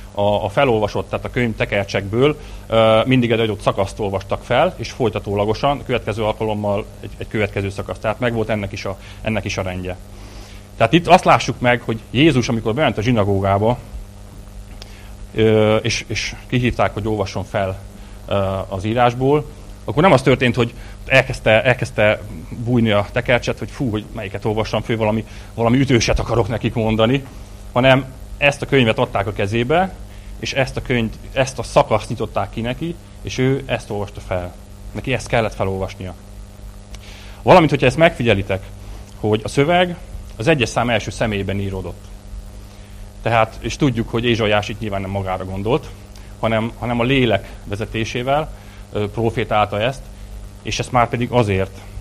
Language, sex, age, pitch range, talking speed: Hungarian, male, 30-49, 100-120 Hz, 145 wpm